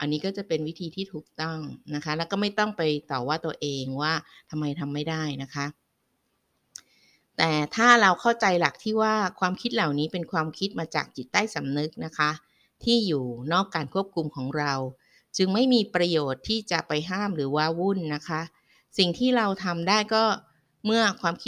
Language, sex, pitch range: Thai, female, 150-190 Hz